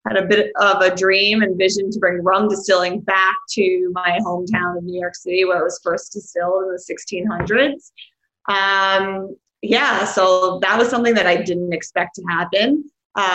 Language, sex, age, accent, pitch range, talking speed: English, female, 20-39, American, 185-230 Hz, 185 wpm